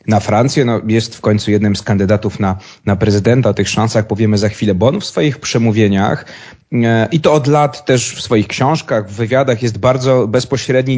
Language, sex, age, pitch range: Polish, male, 30-49, 110-130 Hz